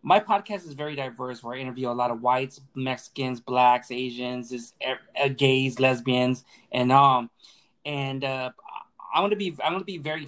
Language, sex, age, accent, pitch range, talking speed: English, male, 20-39, American, 125-150 Hz, 180 wpm